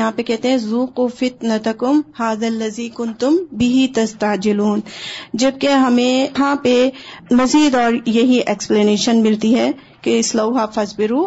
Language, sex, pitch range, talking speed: Urdu, female, 225-270 Hz, 130 wpm